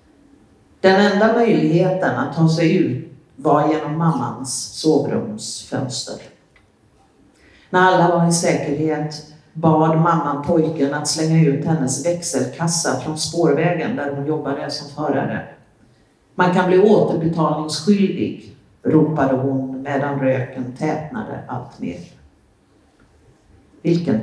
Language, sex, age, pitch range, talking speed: Swedish, female, 50-69, 130-170 Hz, 105 wpm